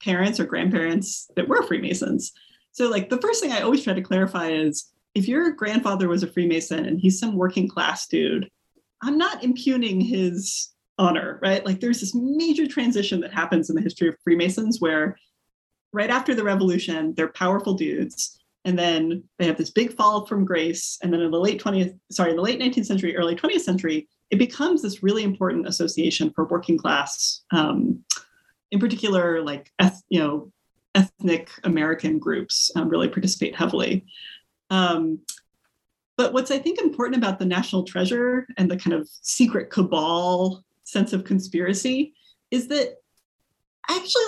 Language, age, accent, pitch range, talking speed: English, 30-49, American, 170-240 Hz, 170 wpm